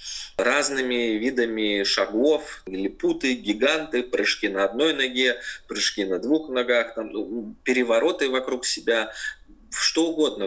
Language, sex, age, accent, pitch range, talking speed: Russian, male, 20-39, native, 115-150 Hz, 105 wpm